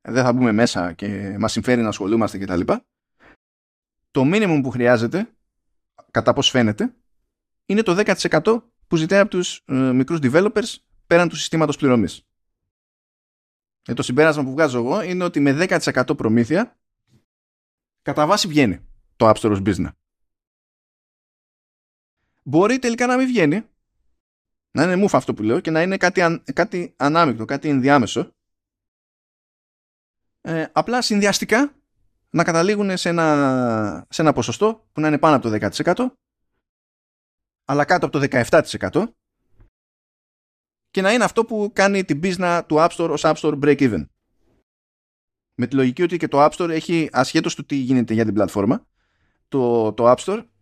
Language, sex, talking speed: Greek, male, 145 wpm